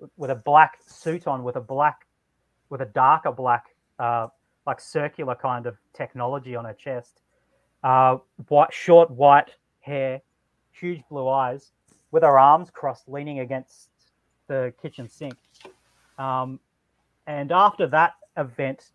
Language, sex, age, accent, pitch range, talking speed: English, male, 30-49, Australian, 125-145 Hz, 135 wpm